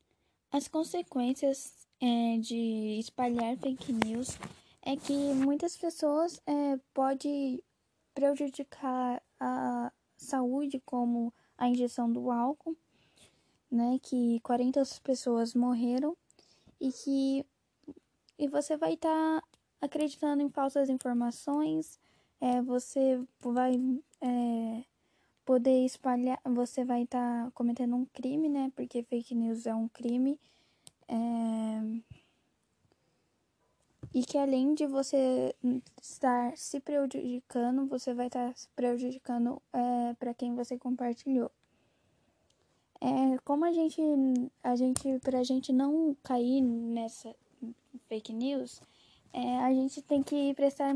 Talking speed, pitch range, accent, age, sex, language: 100 wpm, 240-280 Hz, Brazilian, 10-29, female, Portuguese